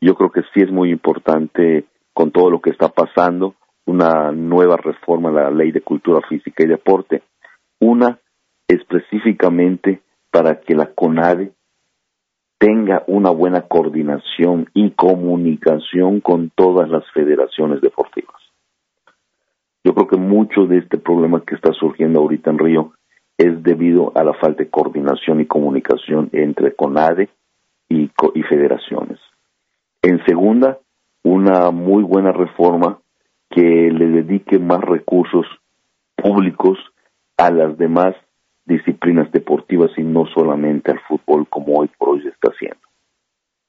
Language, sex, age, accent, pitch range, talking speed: Spanish, male, 50-69, Mexican, 80-95 Hz, 135 wpm